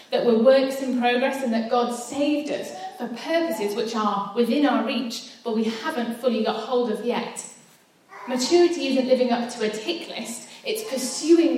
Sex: female